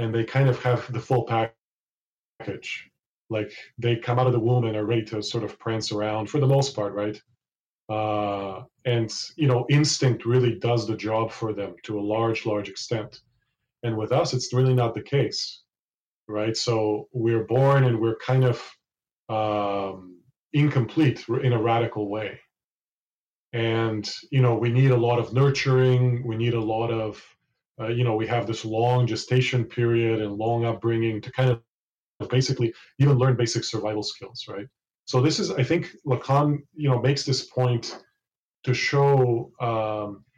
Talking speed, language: 170 wpm, English